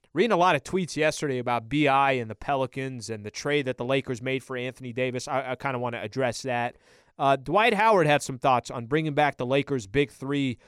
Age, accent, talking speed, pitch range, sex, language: 30-49, American, 230 wpm, 125-155 Hz, male, English